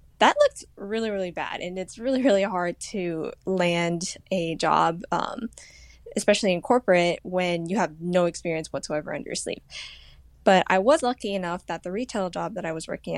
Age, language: 10-29, English